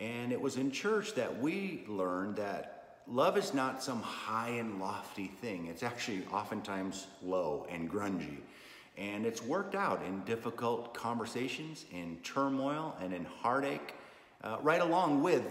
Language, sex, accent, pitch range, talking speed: English, male, American, 100-135 Hz, 150 wpm